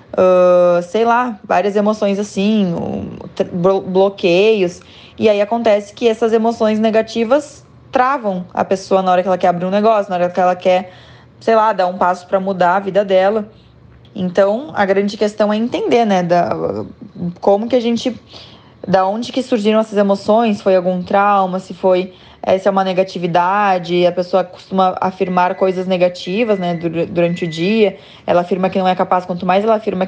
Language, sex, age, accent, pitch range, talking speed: Portuguese, female, 20-39, Brazilian, 180-220 Hz, 175 wpm